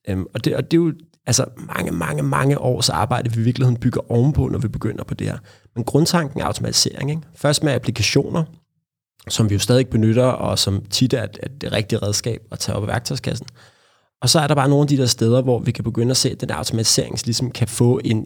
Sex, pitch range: male, 115-140 Hz